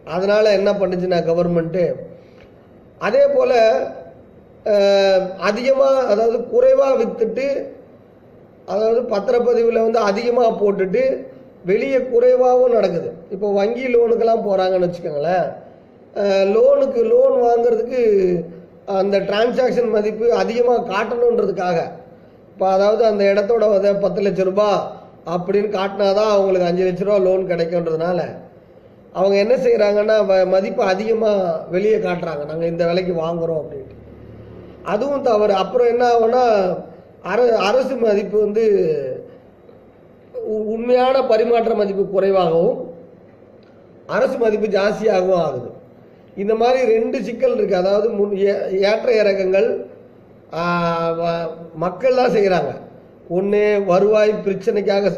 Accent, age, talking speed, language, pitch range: native, 30-49, 90 wpm, Tamil, 185-235 Hz